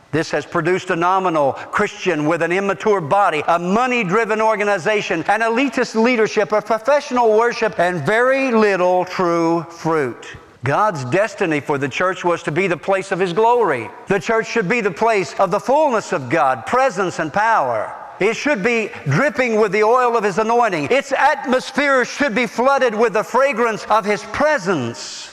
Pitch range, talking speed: 175-240 Hz, 170 wpm